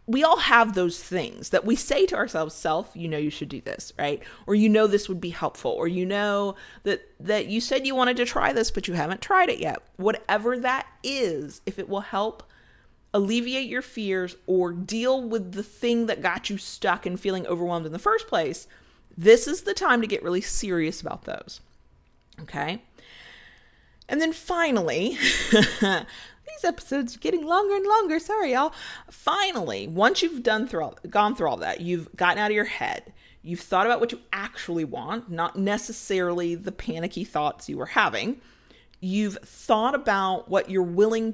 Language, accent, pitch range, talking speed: English, American, 175-235 Hz, 185 wpm